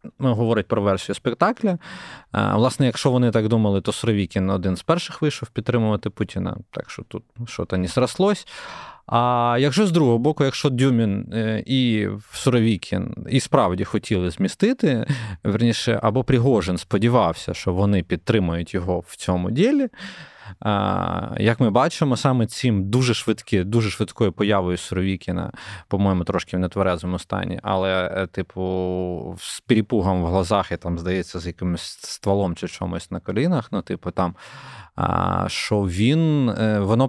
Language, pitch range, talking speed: Ukrainian, 95-125 Hz, 135 wpm